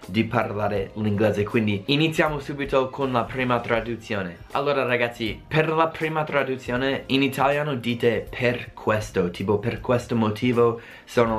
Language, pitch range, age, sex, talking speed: Italian, 105-130 Hz, 20-39, male, 135 wpm